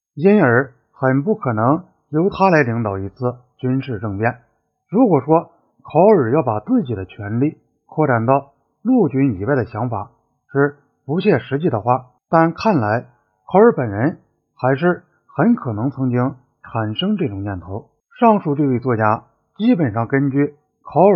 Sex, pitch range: male, 120-165 Hz